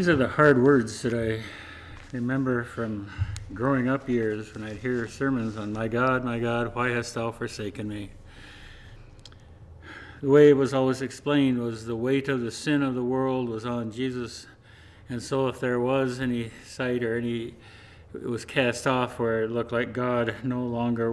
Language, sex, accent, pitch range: English, male, American, 110-135 Hz